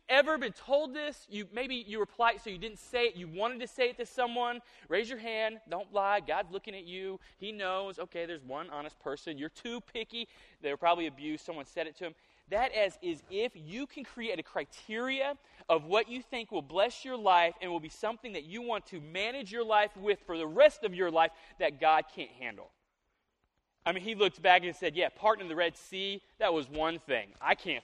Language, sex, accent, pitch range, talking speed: English, male, American, 180-240 Hz, 225 wpm